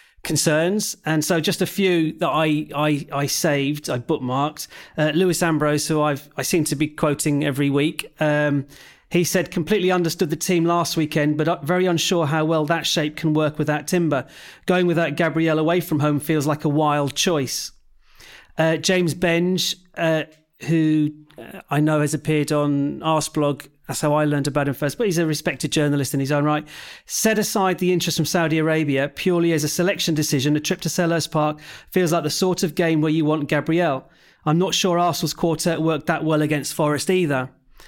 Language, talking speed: English, 195 wpm